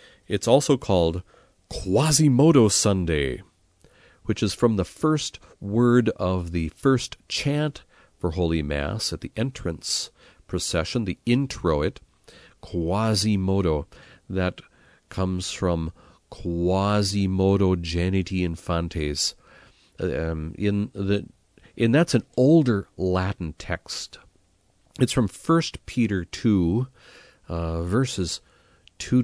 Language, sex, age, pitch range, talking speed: English, male, 40-59, 85-110 Hz, 100 wpm